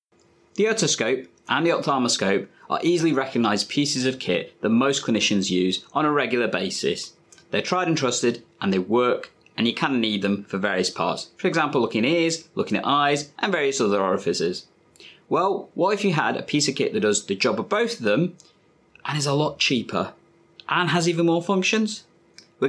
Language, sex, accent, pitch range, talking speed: English, male, British, 125-175 Hz, 195 wpm